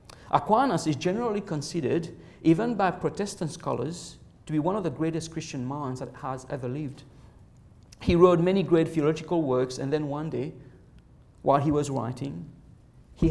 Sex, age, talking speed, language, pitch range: male, 50-69, 160 wpm, English, 125-165 Hz